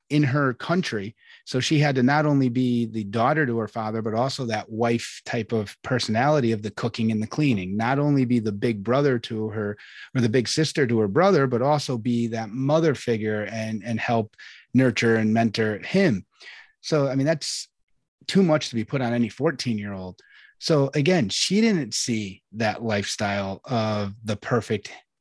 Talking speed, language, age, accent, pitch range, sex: 190 wpm, English, 30-49, American, 110-145 Hz, male